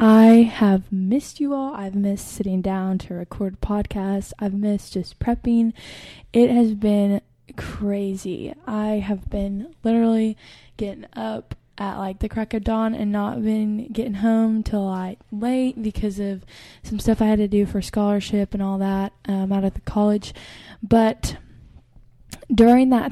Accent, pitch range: American, 200-225 Hz